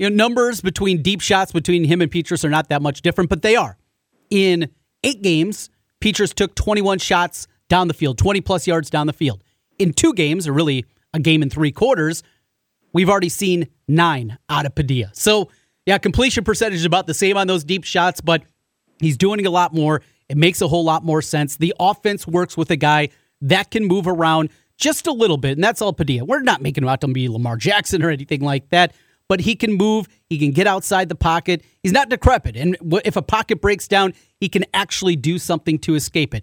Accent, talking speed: American, 220 wpm